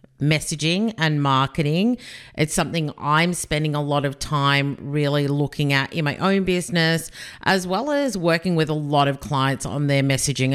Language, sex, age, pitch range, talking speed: English, female, 40-59, 145-175 Hz, 170 wpm